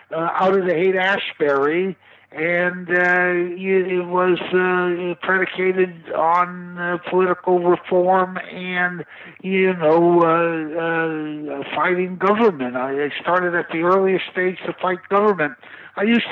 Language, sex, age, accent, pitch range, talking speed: English, male, 60-79, American, 170-185 Hz, 120 wpm